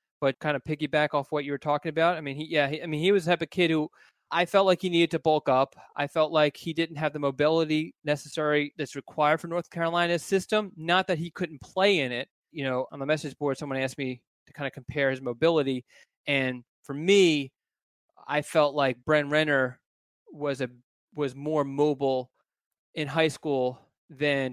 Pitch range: 135-160 Hz